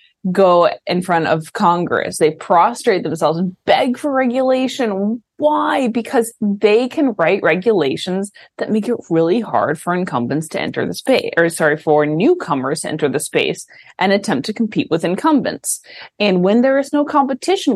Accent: American